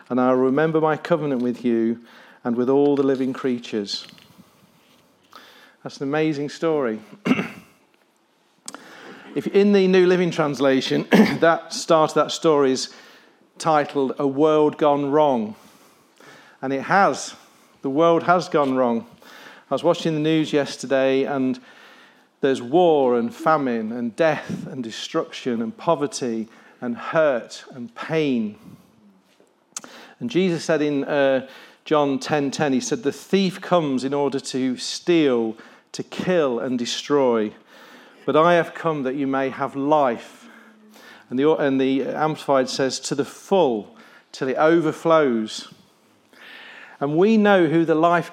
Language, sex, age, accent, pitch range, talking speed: English, male, 40-59, British, 135-170 Hz, 135 wpm